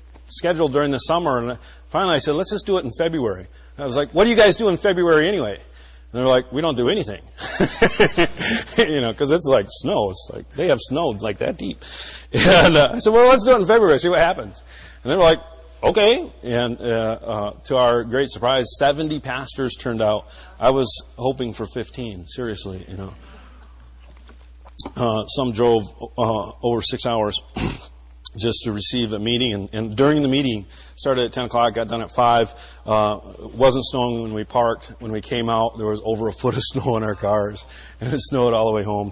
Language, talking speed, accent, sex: English, 210 wpm, American, male